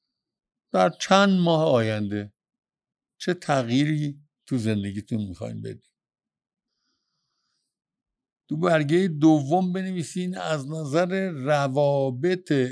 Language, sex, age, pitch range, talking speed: Persian, male, 60-79, 125-180 Hz, 80 wpm